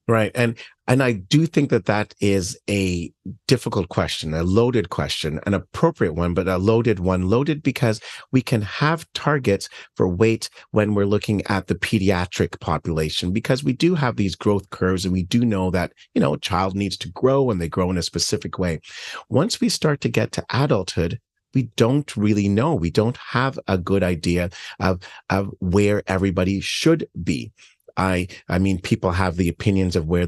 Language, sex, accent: English, male, American